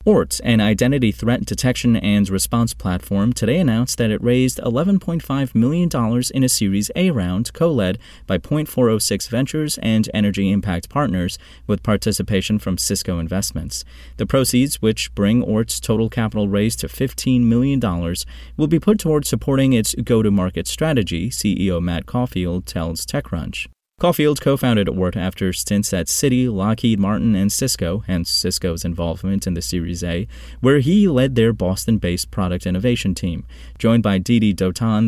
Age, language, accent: 30-49, English, American